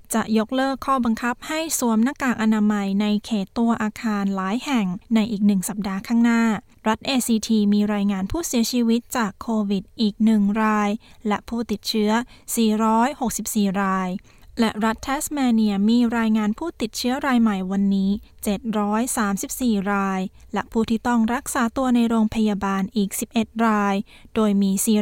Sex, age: female, 20-39